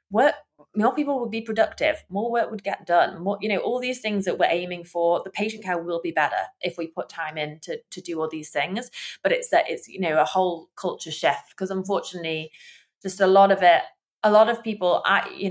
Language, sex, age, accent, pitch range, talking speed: English, female, 20-39, British, 175-215 Hz, 235 wpm